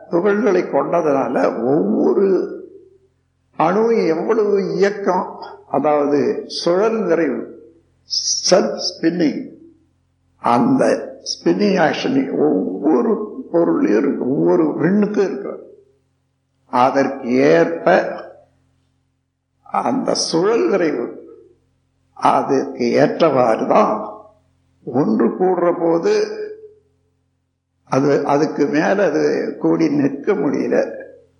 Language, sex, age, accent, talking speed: Tamil, male, 60-79, native, 60 wpm